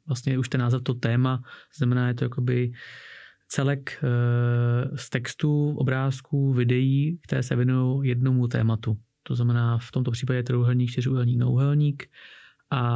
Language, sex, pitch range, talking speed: Czech, male, 125-140 Hz, 145 wpm